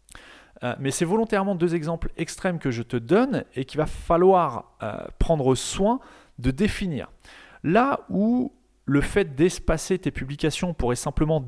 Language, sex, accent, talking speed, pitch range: French, male, French, 140 wpm, 130-190 Hz